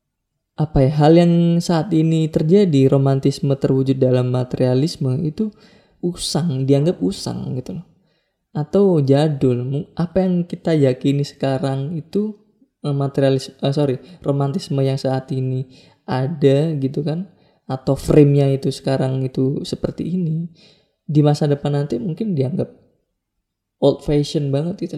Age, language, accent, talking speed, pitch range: 20-39, Indonesian, native, 125 wpm, 130-165 Hz